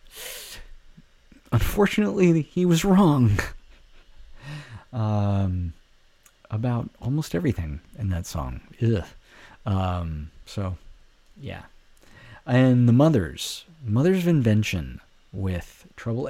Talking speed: 85 wpm